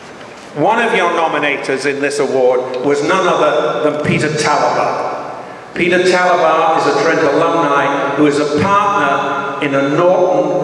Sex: male